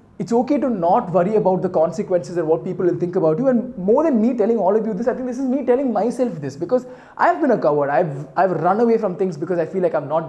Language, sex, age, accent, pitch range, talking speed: Tamil, male, 20-39, native, 170-235 Hz, 295 wpm